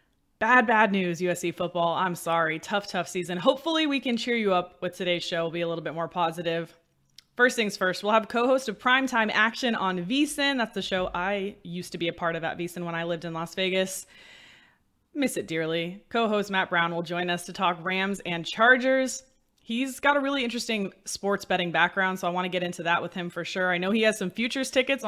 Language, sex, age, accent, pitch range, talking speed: English, female, 20-39, American, 175-220 Hz, 225 wpm